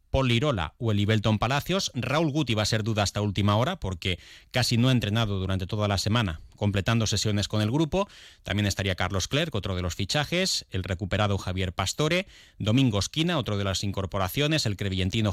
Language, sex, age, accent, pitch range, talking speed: Spanish, male, 30-49, Spanish, 95-125 Hz, 190 wpm